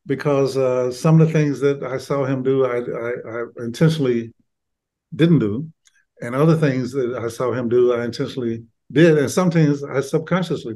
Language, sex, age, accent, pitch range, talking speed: English, male, 50-69, American, 120-145 Hz, 180 wpm